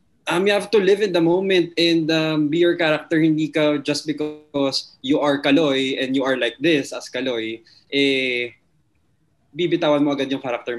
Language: Filipino